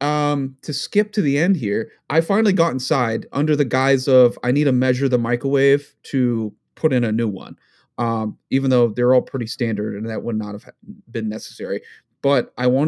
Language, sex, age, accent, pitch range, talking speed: English, male, 30-49, American, 120-155 Hz, 205 wpm